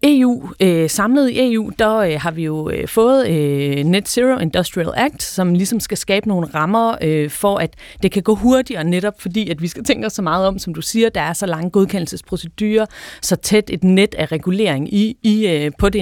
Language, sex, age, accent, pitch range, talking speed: Danish, female, 30-49, native, 170-225 Hz, 215 wpm